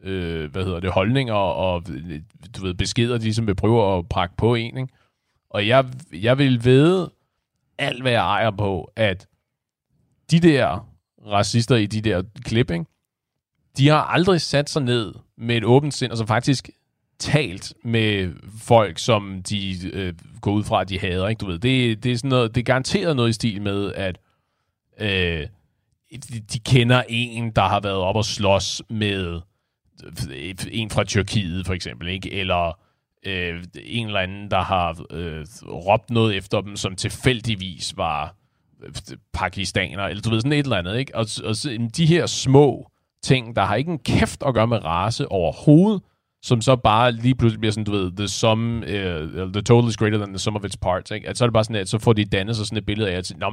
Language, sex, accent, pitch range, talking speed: Danish, male, native, 95-125 Hz, 195 wpm